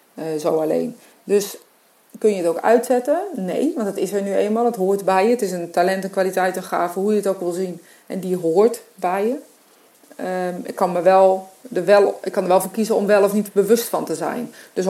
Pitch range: 185-220 Hz